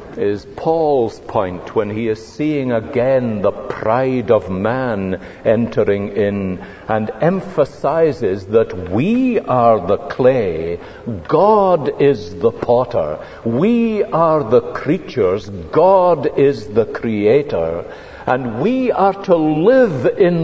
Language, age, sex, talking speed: English, 60-79, male, 115 wpm